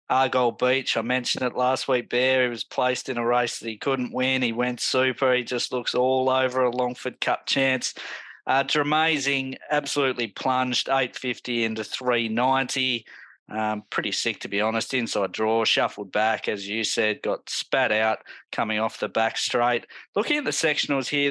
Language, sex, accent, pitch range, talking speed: English, male, Australian, 110-130 Hz, 175 wpm